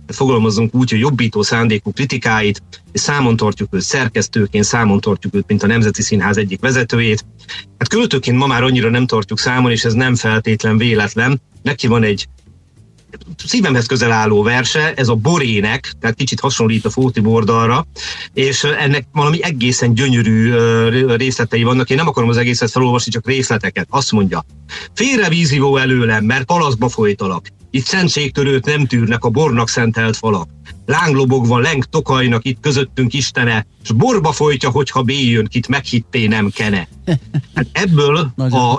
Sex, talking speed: male, 150 wpm